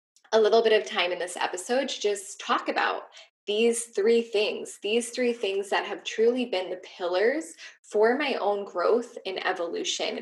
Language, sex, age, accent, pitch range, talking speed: English, female, 10-29, American, 185-265 Hz, 175 wpm